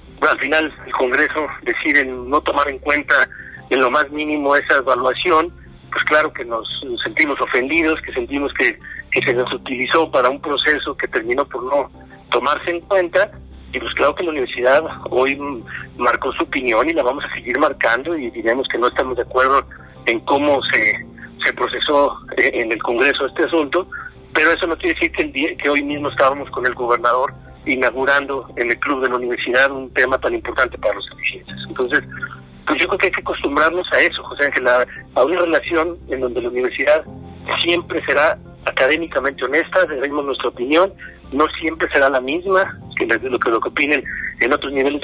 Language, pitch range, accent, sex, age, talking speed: Spanish, 130-175 Hz, Mexican, male, 50-69, 185 wpm